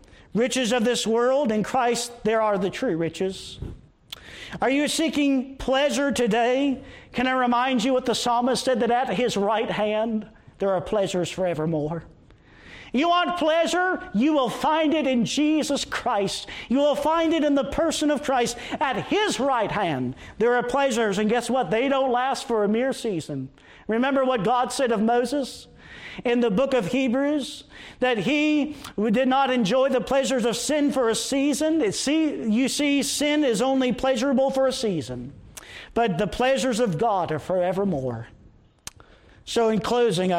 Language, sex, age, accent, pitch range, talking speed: English, male, 50-69, American, 210-275 Hz, 165 wpm